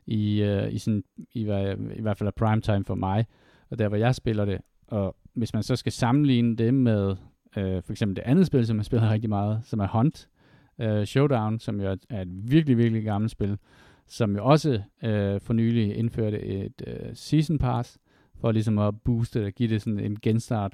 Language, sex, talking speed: Danish, male, 210 wpm